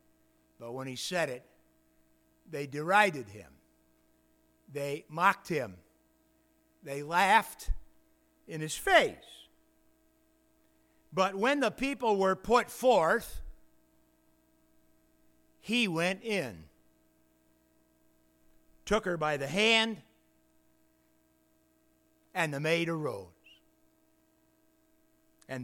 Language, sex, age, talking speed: English, male, 60-79, 85 wpm